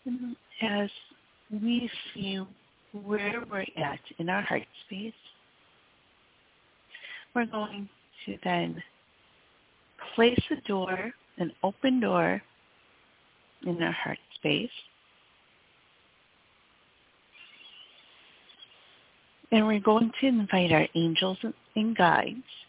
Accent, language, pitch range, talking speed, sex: American, English, 185-230 Hz, 85 wpm, female